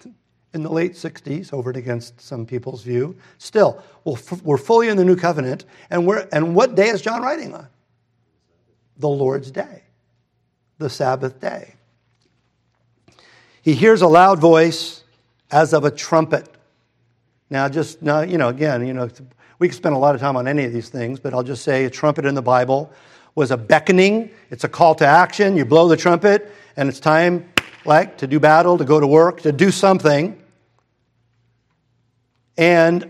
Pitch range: 130-180 Hz